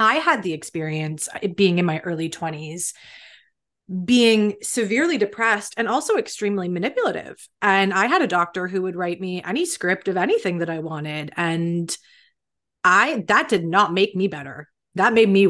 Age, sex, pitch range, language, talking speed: 30-49, female, 170-210 Hz, English, 165 wpm